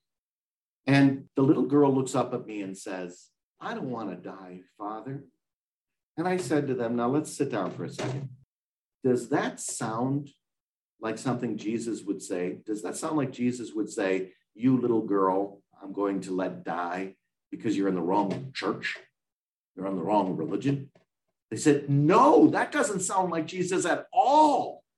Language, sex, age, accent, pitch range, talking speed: English, male, 50-69, American, 110-165 Hz, 175 wpm